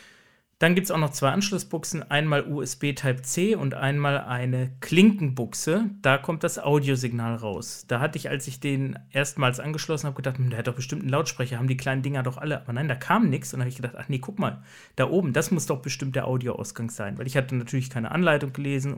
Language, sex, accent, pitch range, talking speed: German, male, German, 130-150 Hz, 225 wpm